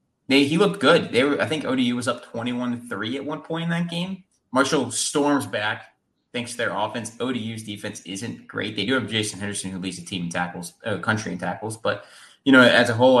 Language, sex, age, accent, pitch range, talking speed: English, male, 20-39, American, 100-140 Hz, 225 wpm